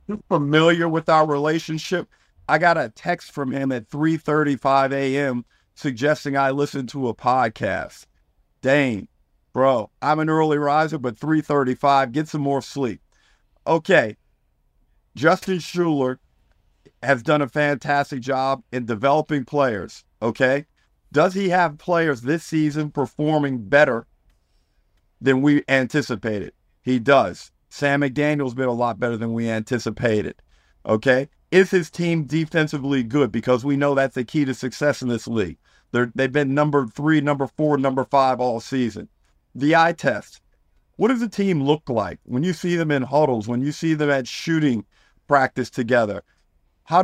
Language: English